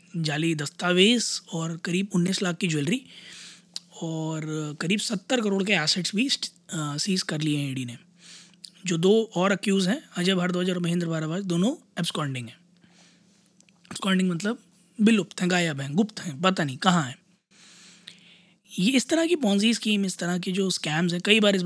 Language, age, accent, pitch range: Hindi, 20-39, native, 160-190 Hz